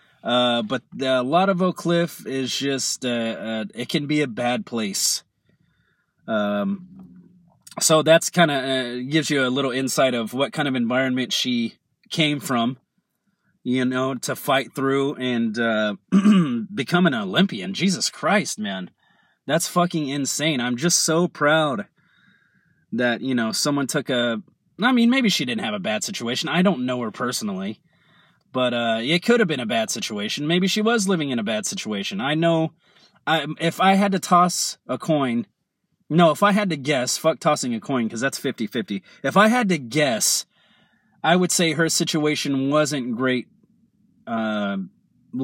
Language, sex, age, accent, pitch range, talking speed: English, male, 30-49, American, 130-195 Hz, 170 wpm